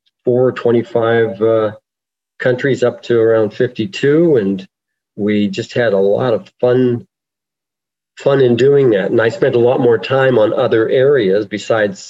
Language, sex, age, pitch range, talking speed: English, male, 50-69, 100-125 Hz, 155 wpm